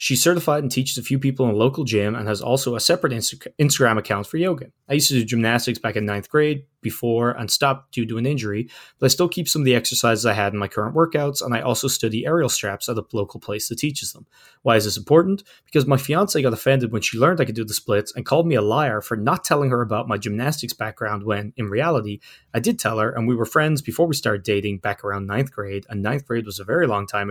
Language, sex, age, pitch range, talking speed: English, male, 20-39, 110-140 Hz, 265 wpm